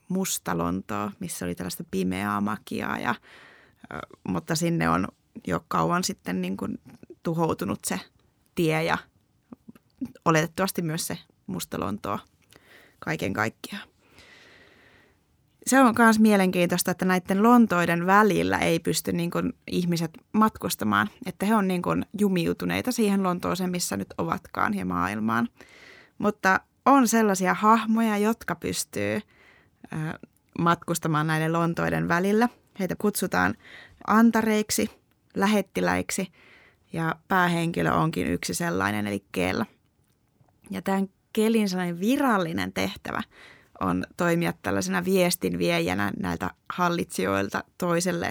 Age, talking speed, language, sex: 20-39, 105 wpm, Finnish, female